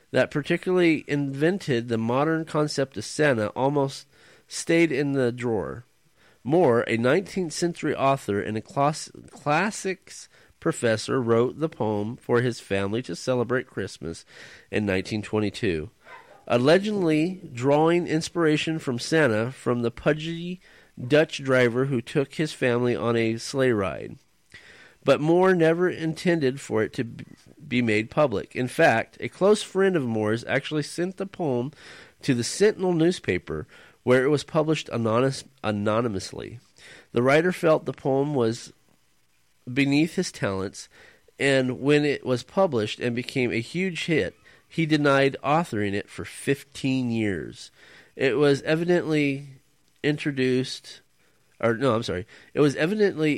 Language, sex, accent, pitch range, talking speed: English, male, American, 120-160 Hz, 135 wpm